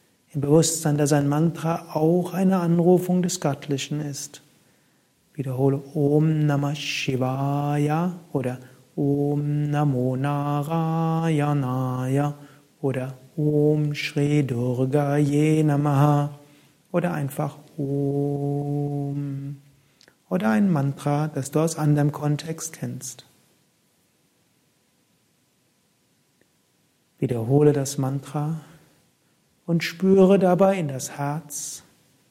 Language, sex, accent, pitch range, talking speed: German, male, German, 140-160 Hz, 80 wpm